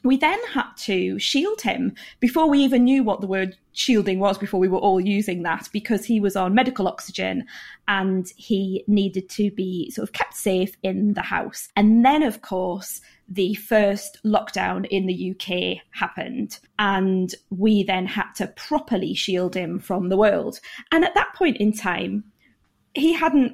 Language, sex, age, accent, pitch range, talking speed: English, female, 20-39, British, 190-260 Hz, 175 wpm